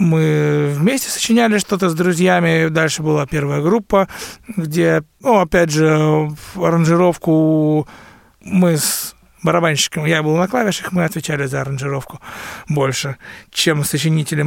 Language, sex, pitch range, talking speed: Russian, male, 150-180 Hz, 125 wpm